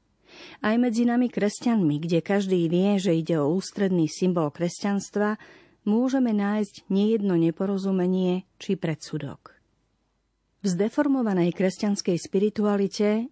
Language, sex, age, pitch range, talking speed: Slovak, female, 40-59, 170-210 Hz, 105 wpm